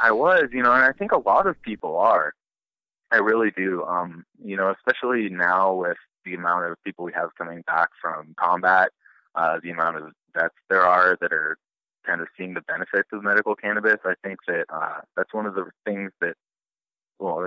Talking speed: 205 wpm